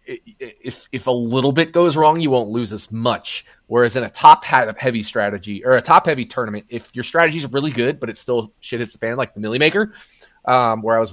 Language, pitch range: English, 110-145 Hz